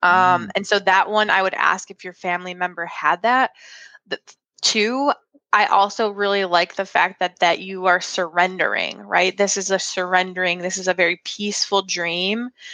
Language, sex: English, female